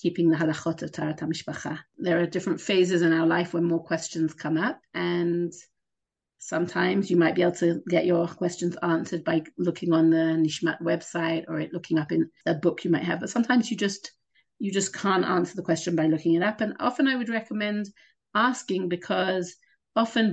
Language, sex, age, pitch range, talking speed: English, female, 40-59, 170-200 Hz, 195 wpm